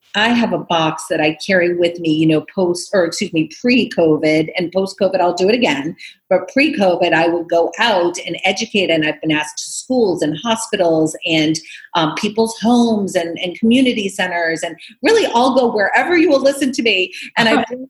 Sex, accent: female, American